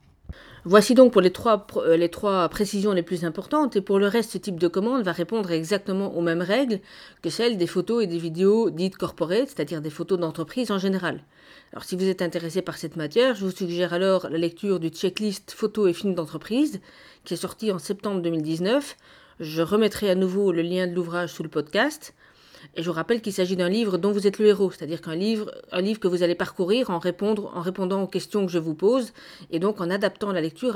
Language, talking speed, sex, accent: French, 220 wpm, female, French